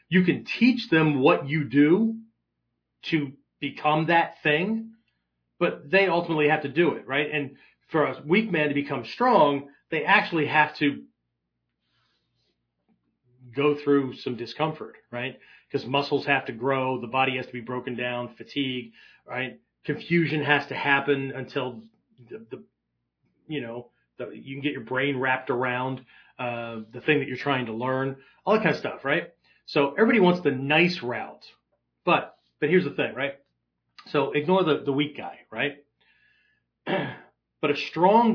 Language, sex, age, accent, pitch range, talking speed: English, male, 40-59, American, 125-160 Hz, 160 wpm